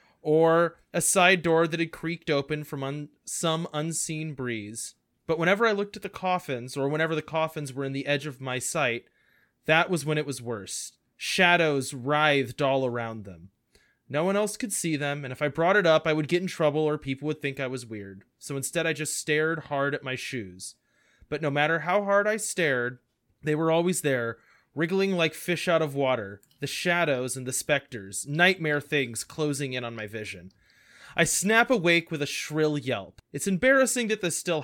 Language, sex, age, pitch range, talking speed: English, male, 20-39, 135-175 Hz, 200 wpm